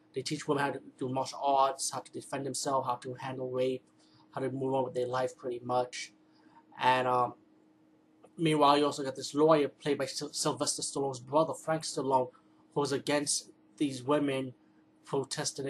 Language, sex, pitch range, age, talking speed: English, male, 130-145 Hz, 20-39, 170 wpm